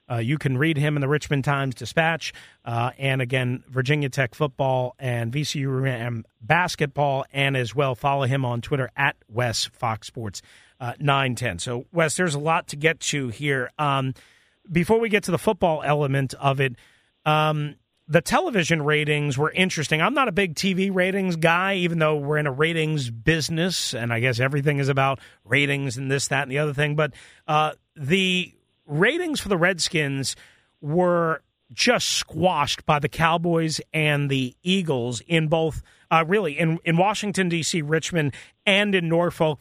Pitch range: 135-170 Hz